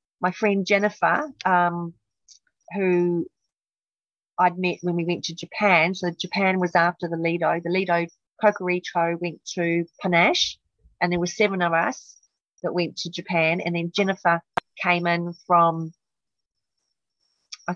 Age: 30-49